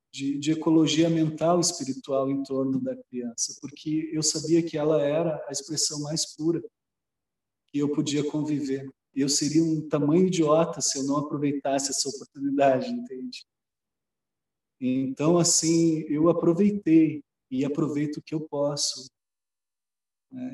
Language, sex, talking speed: Portuguese, male, 135 wpm